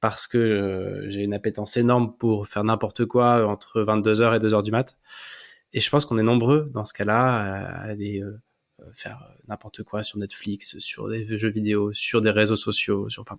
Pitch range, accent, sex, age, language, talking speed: 110-140 Hz, French, male, 20-39, French, 200 wpm